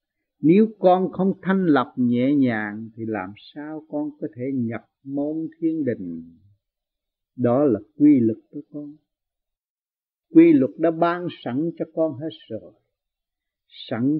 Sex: male